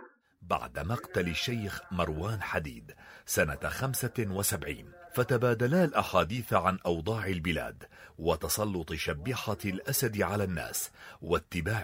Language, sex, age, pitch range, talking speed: Arabic, male, 40-59, 90-120 Hz, 90 wpm